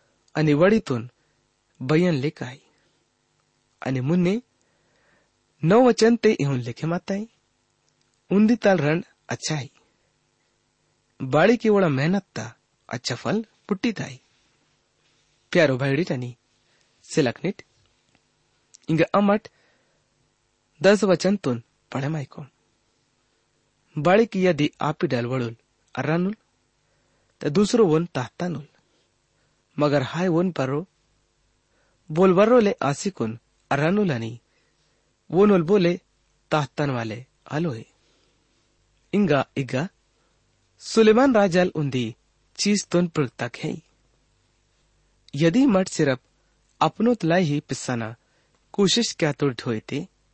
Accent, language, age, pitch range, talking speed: Indian, English, 30-49, 120-185 Hz, 55 wpm